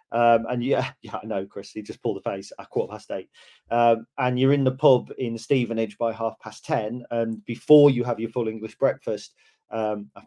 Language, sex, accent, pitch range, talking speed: English, male, British, 115-140 Hz, 215 wpm